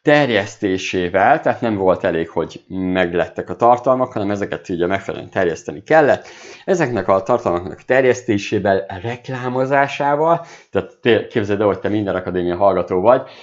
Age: 50-69